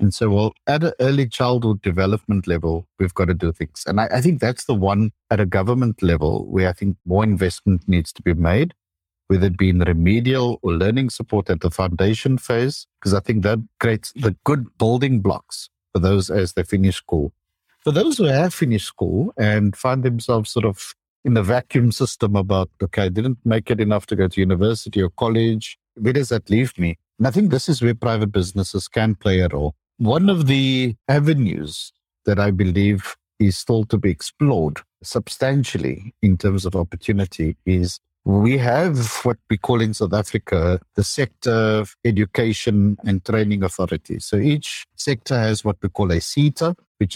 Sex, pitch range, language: male, 95-120 Hz, English